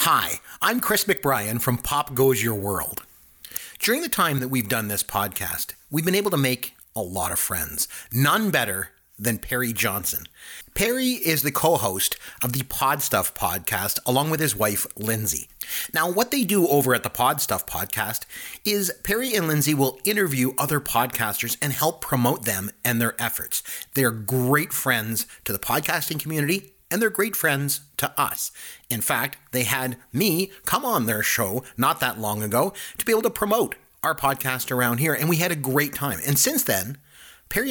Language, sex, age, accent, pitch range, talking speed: English, male, 40-59, American, 115-160 Hz, 185 wpm